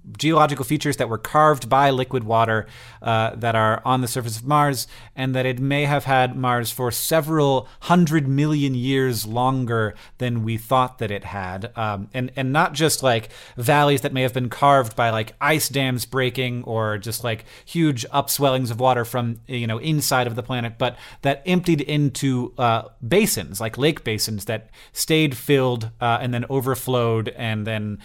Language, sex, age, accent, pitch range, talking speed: English, male, 30-49, American, 115-145 Hz, 180 wpm